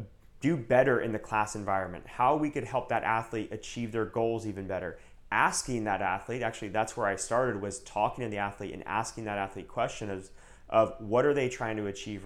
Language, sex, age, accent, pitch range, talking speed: English, male, 30-49, American, 105-120 Hz, 210 wpm